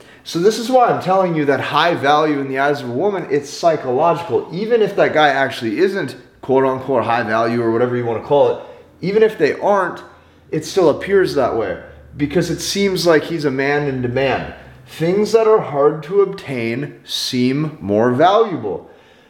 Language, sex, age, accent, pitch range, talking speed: English, male, 30-49, American, 125-170 Hz, 195 wpm